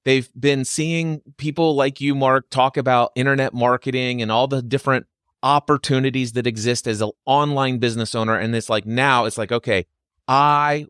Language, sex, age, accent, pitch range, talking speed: English, male, 30-49, American, 115-145 Hz, 170 wpm